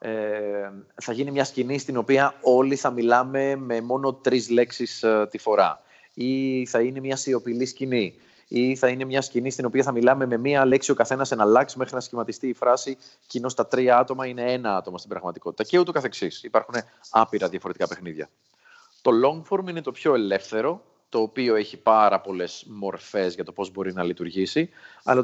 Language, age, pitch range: Greek, 30-49, 115-135 Hz